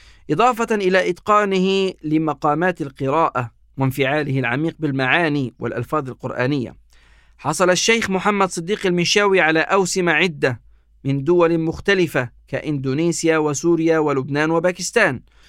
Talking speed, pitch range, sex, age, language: 95 wpm, 135-170 Hz, male, 50-69, Arabic